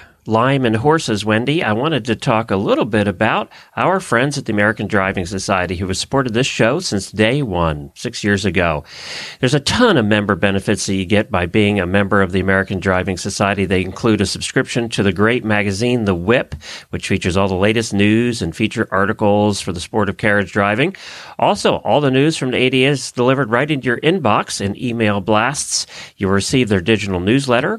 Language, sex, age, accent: English, male, 40-59, American